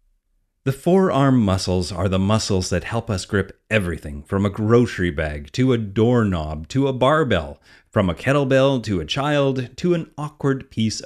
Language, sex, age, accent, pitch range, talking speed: English, male, 30-49, American, 95-130 Hz, 170 wpm